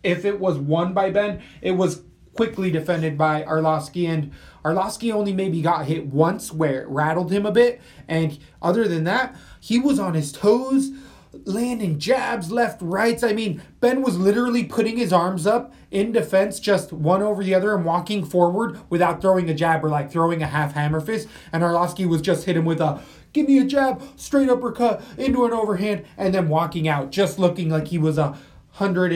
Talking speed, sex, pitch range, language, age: 200 wpm, male, 155-195 Hz, English, 20-39